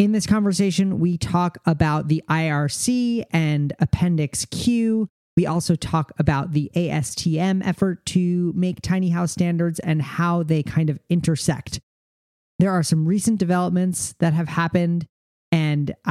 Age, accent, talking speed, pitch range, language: 40-59, American, 140 wpm, 150-185 Hz, English